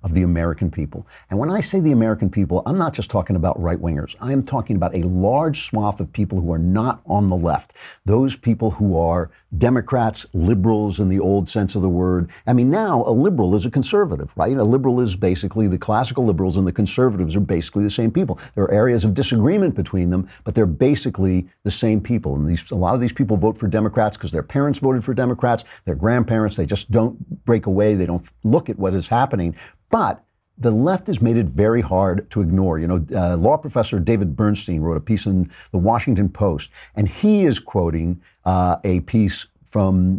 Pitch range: 90-120 Hz